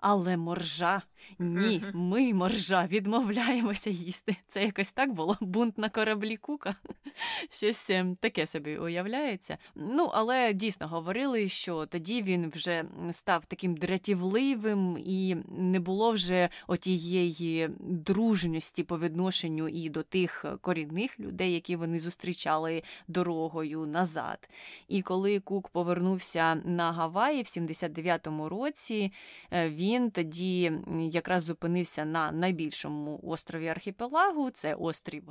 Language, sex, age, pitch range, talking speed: Ukrainian, female, 20-39, 170-210 Hz, 115 wpm